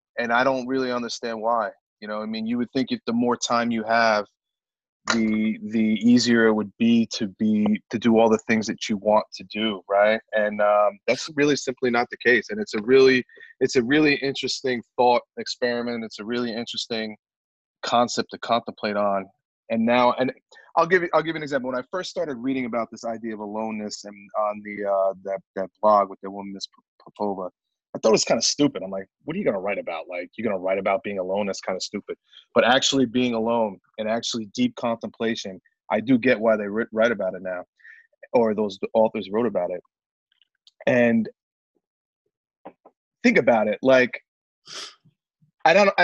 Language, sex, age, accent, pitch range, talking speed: English, male, 30-49, American, 110-145 Hz, 200 wpm